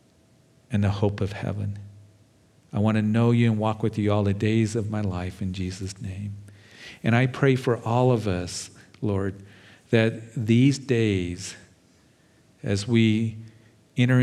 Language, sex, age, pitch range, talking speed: English, male, 50-69, 100-115 Hz, 155 wpm